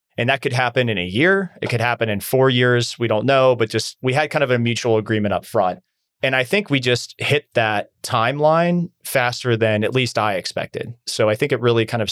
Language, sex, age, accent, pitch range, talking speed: English, male, 30-49, American, 105-125 Hz, 240 wpm